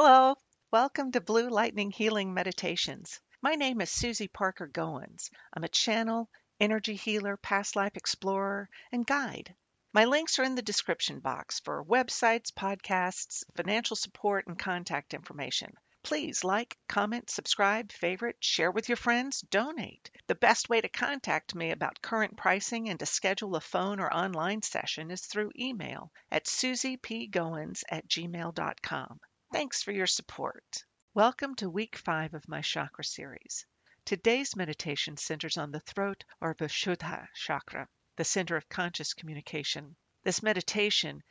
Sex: female